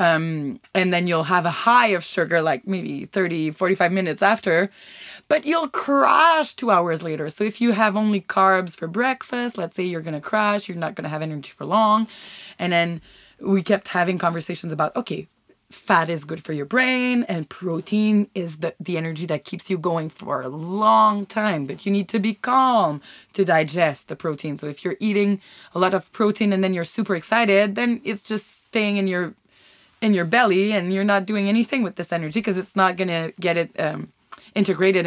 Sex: female